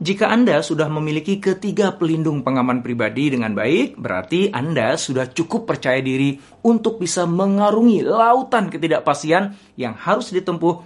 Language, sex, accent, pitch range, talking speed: Indonesian, male, native, 125-190 Hz, 135 wpm